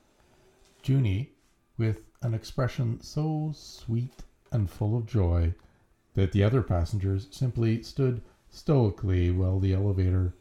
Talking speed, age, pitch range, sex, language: 115 wpm, 50-69, 95-125 Hz, male, English